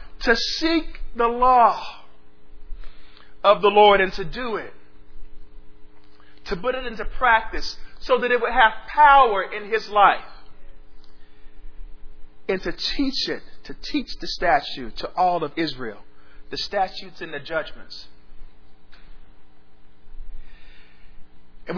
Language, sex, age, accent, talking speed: English, male, 40-59, American, 120 wpm